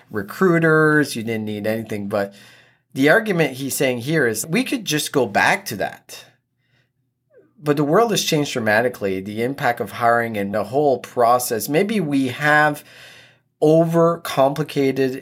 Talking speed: 145 wpm